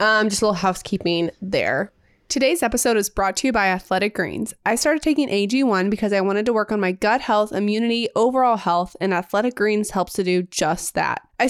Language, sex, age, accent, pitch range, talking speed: English, female, 20-39, American, 195-245 Hz, 210 wpm